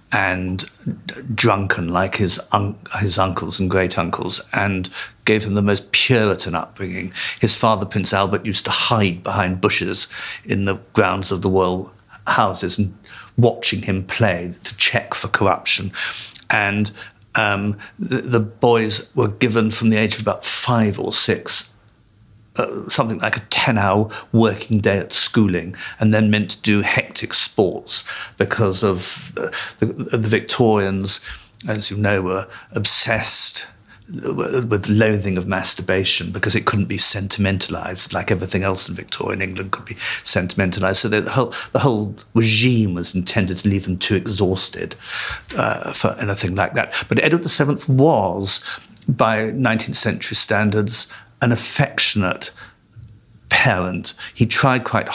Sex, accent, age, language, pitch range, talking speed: male, British, 50-69, English, 95-110 Hz, 140 wpm